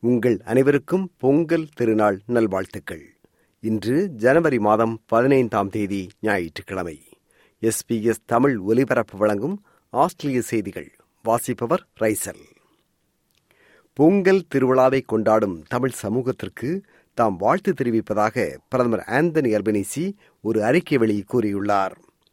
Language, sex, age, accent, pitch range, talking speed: Tamil, male, 50-69, native, 110-150 Hz, 75 wpm